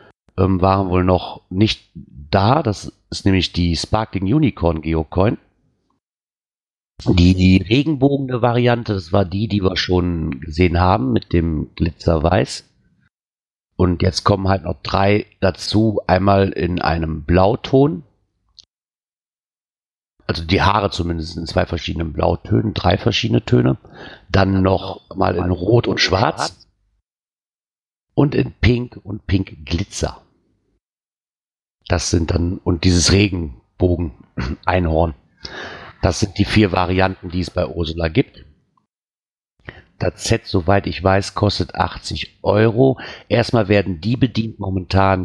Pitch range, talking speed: 90-110 Hz, 120 wpm